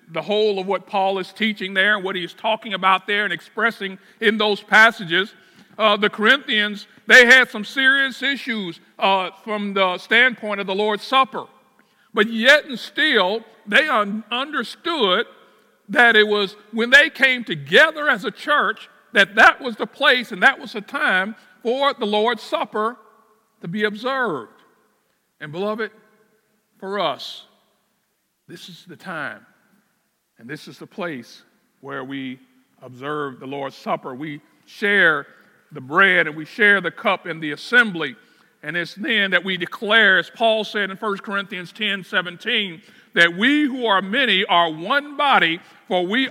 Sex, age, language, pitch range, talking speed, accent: male, 50-69, English, 180-230 Hz, 160 wpm, American